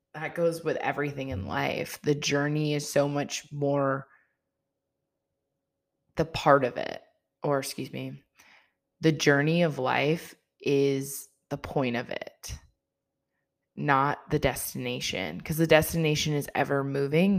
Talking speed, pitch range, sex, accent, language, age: 130 wpm, 135-145 Hz, female, American, English, 20-39